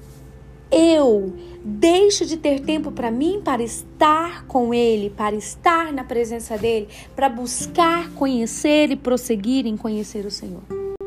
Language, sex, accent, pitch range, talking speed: Portuguese, female, Brazilian, 245-340 Hz, 135 wpm